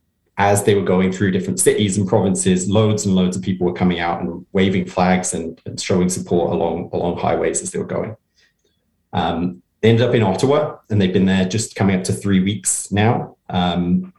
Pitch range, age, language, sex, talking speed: 90-110 Hz, 20-39, English, male, 205 wpm